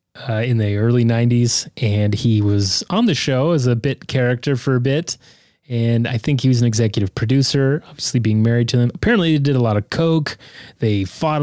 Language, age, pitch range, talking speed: English, 30-49, 110-135 Hz, 210 wpm